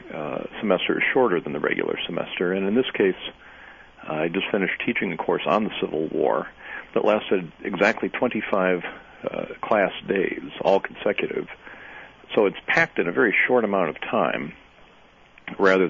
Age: 50-69